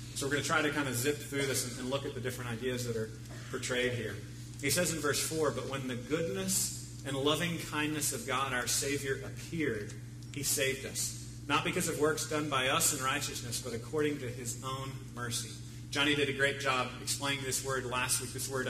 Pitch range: 120-145 Hz